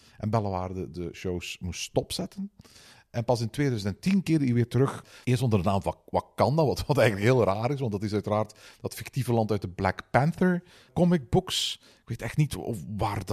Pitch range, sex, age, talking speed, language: 100-135 Hz, male, 50-69, 195 wpm, Dutch